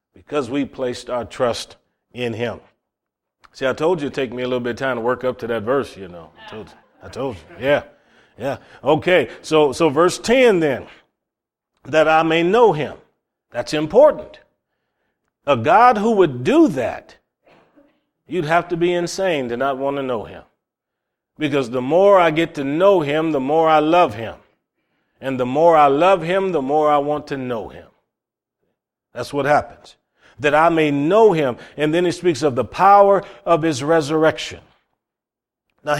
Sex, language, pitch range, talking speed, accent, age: male, English, 135-180 Hz, 185 wpm, American, 40-59